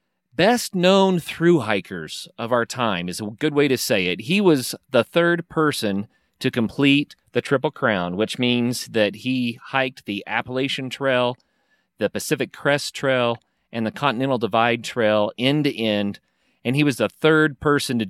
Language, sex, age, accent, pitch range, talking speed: English, male, 40-59, American, 115-140 Hz, 160 wpm